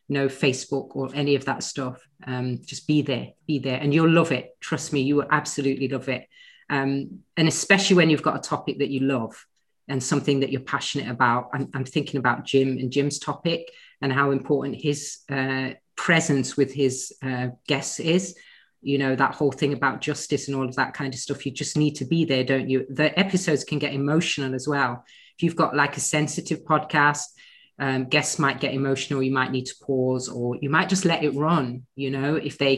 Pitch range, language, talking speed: 135-175 Hz, English, 215 wpm